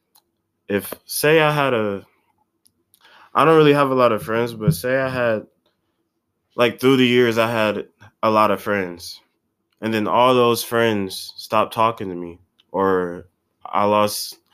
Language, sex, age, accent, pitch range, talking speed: English, male, 20-39, American, 105-145 Hz, 160 wpm